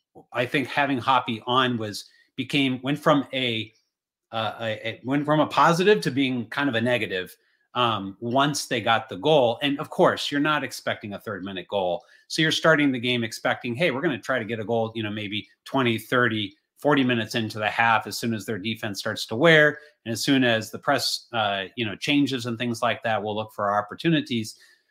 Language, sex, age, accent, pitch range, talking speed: English, male, 30-49, American, 115-140 Hz, 220 wpm